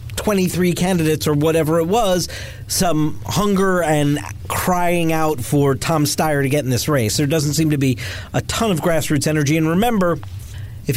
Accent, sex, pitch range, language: American, male, 120-170 Hz, English